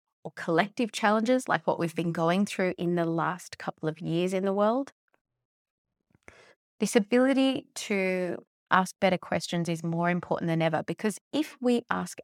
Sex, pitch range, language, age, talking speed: female, 170-225 Hz, English, 30-49, 160 wpm